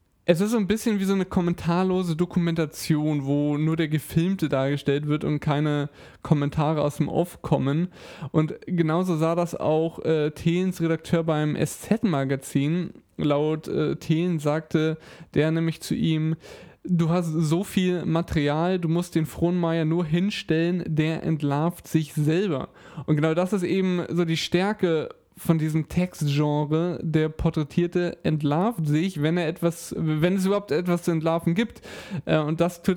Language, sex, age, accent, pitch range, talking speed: German, male, 20-39, German, 155-175 Hz, 150 wpm